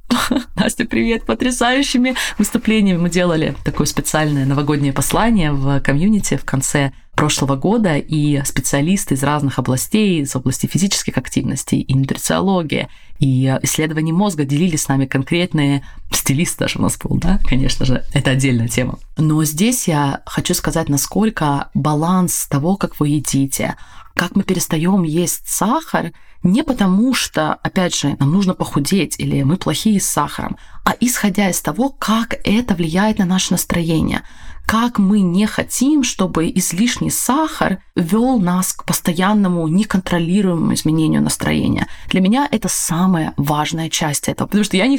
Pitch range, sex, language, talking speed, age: 150-205 Hz, female, Russian, 145 wpm, 20-39